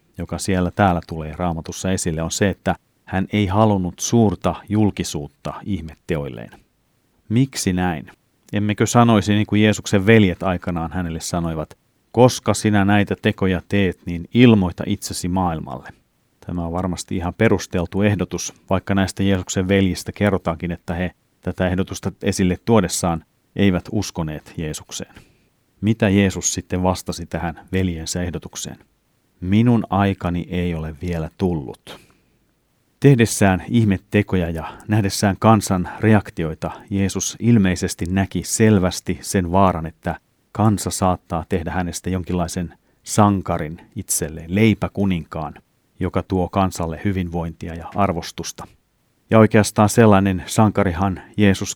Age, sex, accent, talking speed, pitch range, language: 30-49, male, native, 115 wpm, 85-105 Hz, Finnish